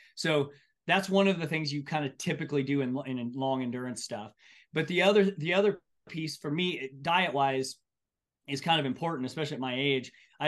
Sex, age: male, 30-49